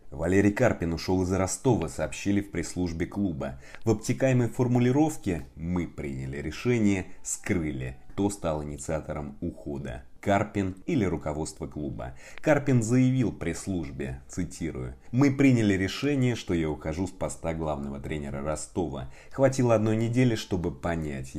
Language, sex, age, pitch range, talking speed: Russian, male, 30-49, 75-105 Hz, 125 wpm